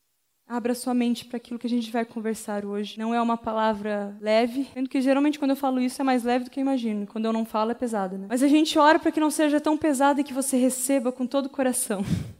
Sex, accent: female, Brazilian